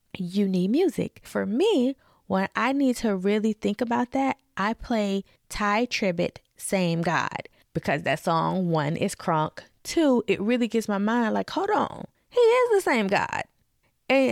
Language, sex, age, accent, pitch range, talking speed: English, female, 20-39, American, 175-235 Hz, 170 wpm